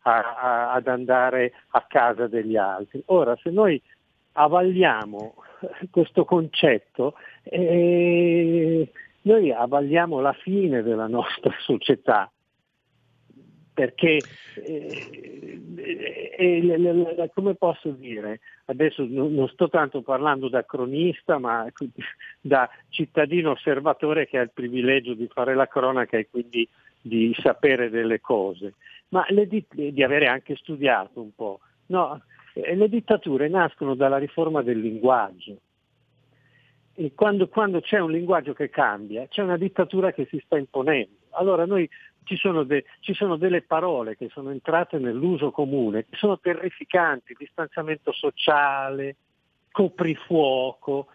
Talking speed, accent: 130 wpm, native